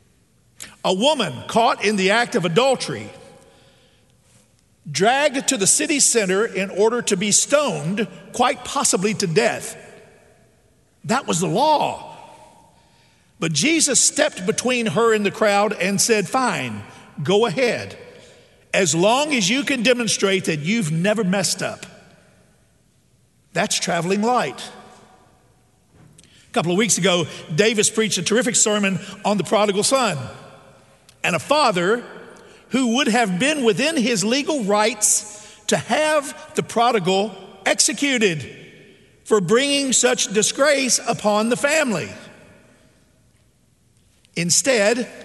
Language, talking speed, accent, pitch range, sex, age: English, 120 wpm, American, 185-240 Hz, male, 50-69